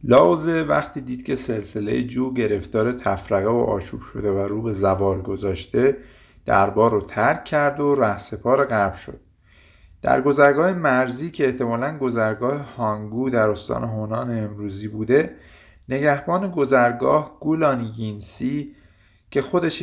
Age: 50-69